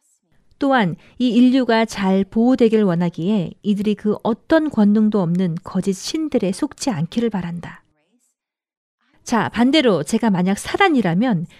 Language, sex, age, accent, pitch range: Korean, female, 40-59, native, 195-290 Hz